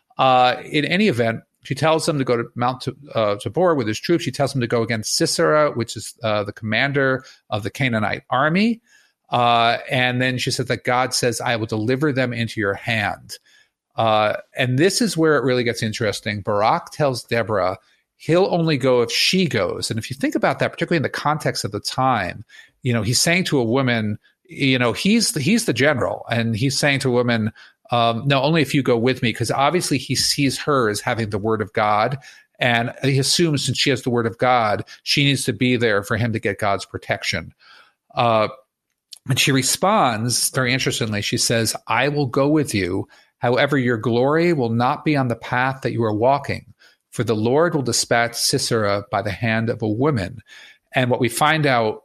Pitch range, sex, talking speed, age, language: 115-145 Hz, male, 210 wpm, 40-59, English